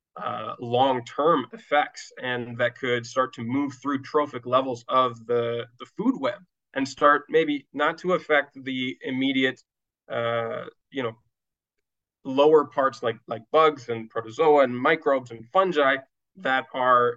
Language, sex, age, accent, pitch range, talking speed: English, male, 20-39, American, 120-135 Hz, 145 wpm